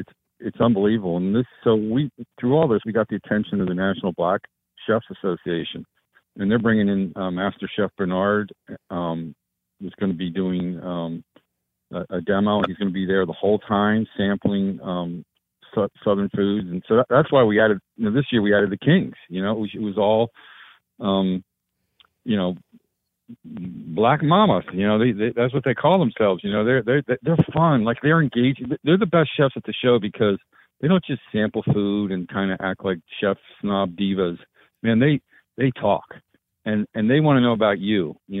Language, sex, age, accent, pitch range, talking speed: English, male, 50-69, American, 95-120 Hz, 190 wpm